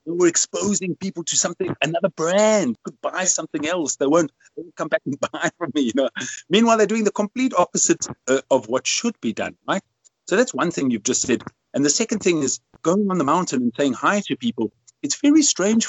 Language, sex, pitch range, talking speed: English, male, 125-205 Hz, 225 wpm